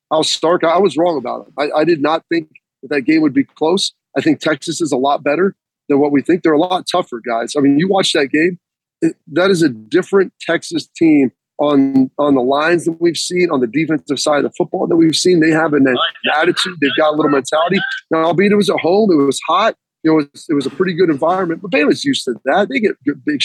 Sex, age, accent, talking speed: male, 30-49, American, 250 wpm